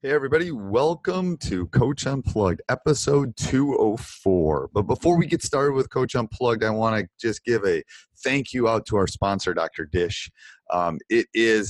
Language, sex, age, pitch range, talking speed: English, male, 30-49, 95-125 Hz, 170 wpm